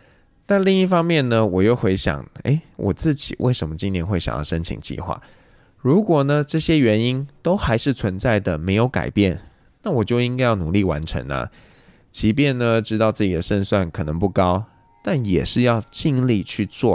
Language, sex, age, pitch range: Chinese, male, 20-39, 90-125 Hz